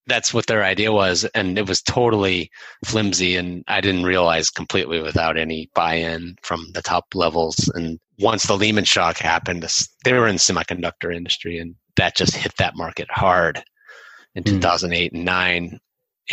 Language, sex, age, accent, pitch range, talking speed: English, male, 30-49, American, 85-110 Hz, 165 wpm